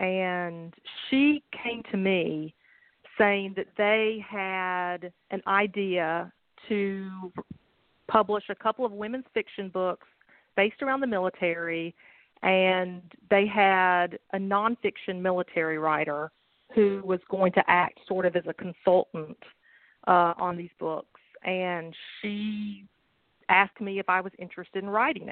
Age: 40-59